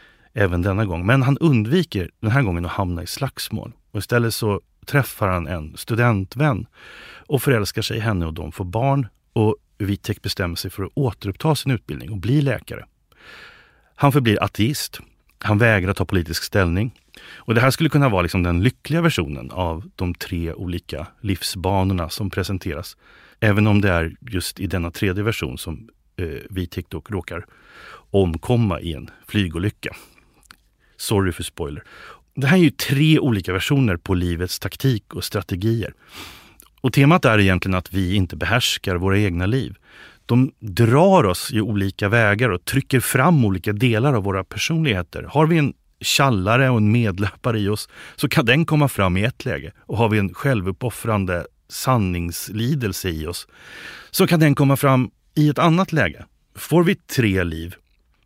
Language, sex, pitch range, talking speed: English, male, 90-130 Hz, 165 wpm